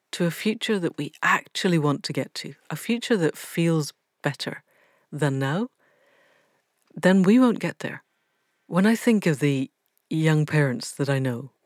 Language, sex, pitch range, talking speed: English, female, 140-185 Hz, 165 wpm